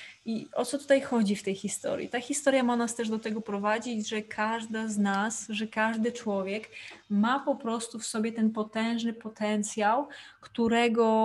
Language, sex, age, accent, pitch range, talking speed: Polish, female, 20-39, native, 205-235 Hz, 170 wpm